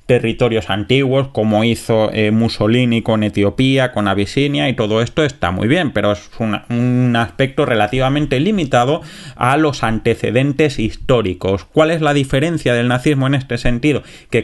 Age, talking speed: 20-39, 155 wpm